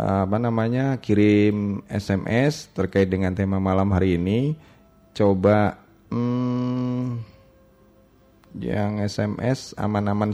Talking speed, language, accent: 85 wpm, Indonesian, native